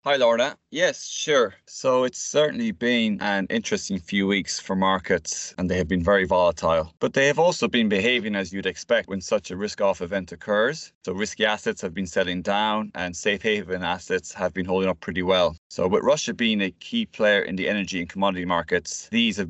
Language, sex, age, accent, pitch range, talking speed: English, male, 20-39, Irish, 90-110 Hz, 205 wpm